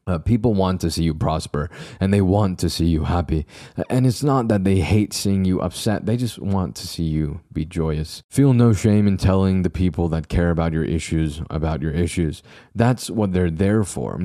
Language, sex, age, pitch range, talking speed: English, male, 20-39, 85-105 Hz, 210 wpm